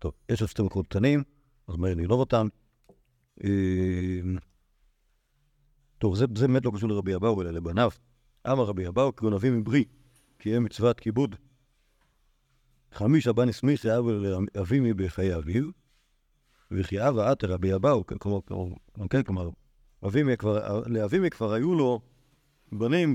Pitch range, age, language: 100-135 Hz, 50-69, Hebrew